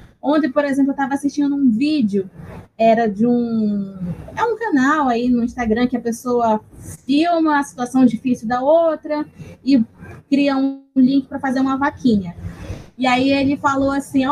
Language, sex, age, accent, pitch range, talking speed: Portuguese, female, 20-39, Brazilian, 225-285 Hz, 165 wpm